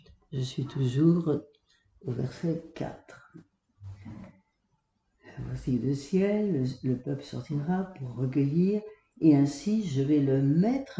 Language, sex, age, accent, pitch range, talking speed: French, female, 60-79, French, 135-185 Hz, 110 wpm